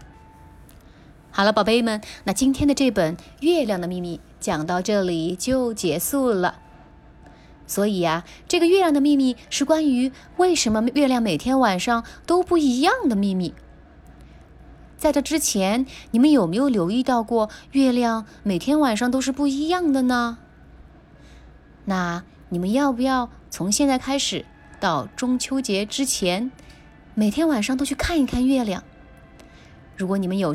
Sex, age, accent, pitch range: female, 20-39, native, 195-280 Hz